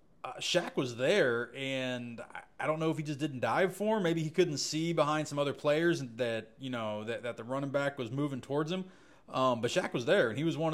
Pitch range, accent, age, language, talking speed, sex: 115-140 Hz, American, 30-49, English, 245 wpm, male